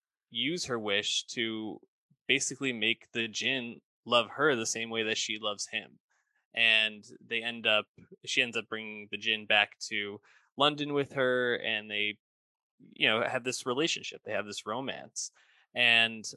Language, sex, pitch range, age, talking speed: English, male, 105-125 Hz, 20-39, 160 wpm